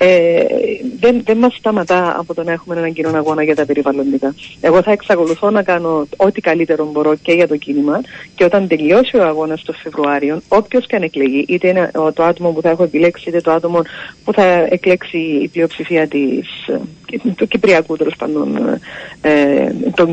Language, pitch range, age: Greek, 165-240 Hz, 40-59